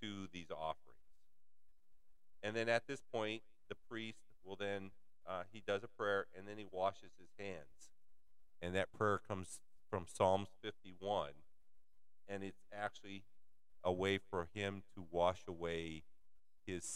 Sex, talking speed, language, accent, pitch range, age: male, 140 wpm, English, American, 85-100 Hz, 50-69